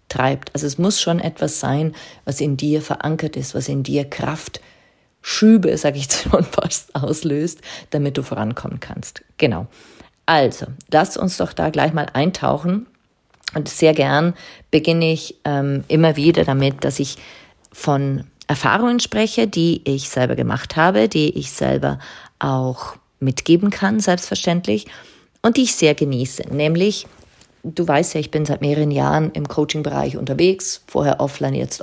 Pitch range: 140-170 Hz